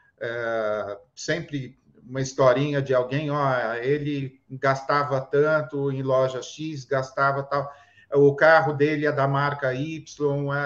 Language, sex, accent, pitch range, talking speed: Portuguese, male, Brazilian, 130-155 Hz, 130 wpm